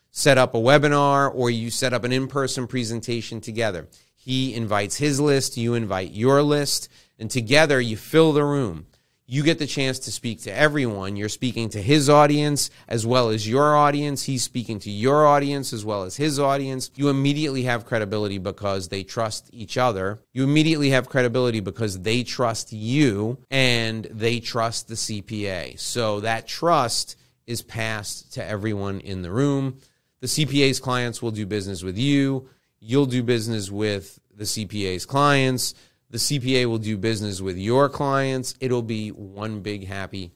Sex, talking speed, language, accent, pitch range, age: male, 170 wpm, English, American, 110-145 Hz, 30-49